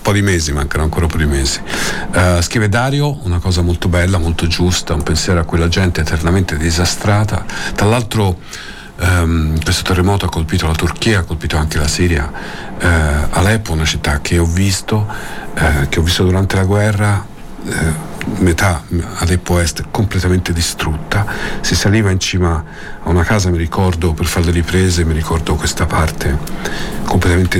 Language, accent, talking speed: Italian, native, 165 wpm